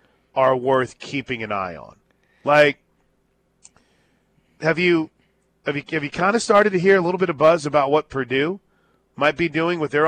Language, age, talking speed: English, 40-59, 185 wpm